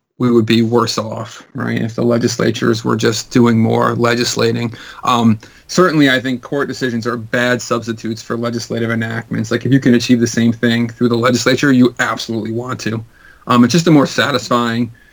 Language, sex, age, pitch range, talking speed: English, male, 40-59, 115-130 Hz, 185 wpm